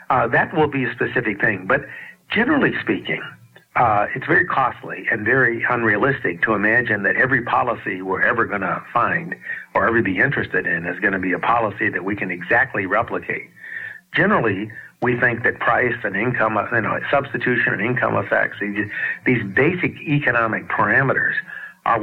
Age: 60-79